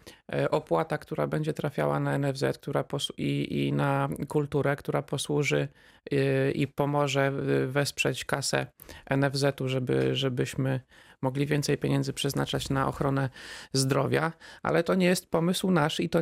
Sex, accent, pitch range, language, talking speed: male, native, 135-160 Hz, Polish, 135 wpm